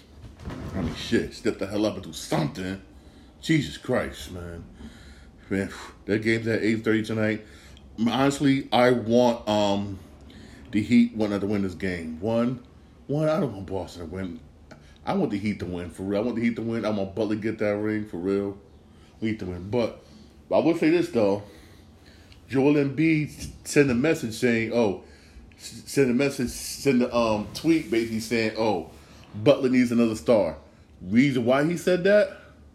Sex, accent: male, American